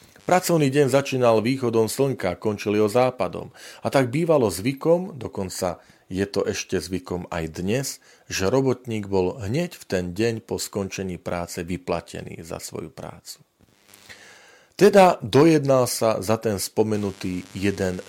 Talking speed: 135 wpm